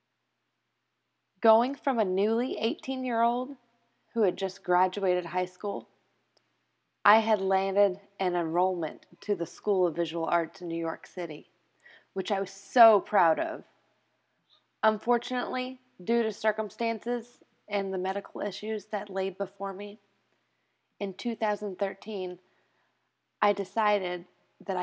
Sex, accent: female, American